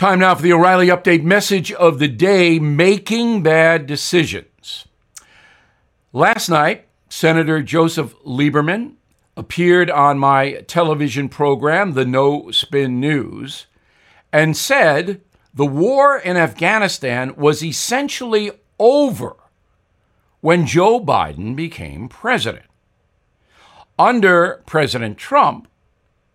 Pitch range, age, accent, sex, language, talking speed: 140-185 Hz, 60-79, American, male, English, 100 wpm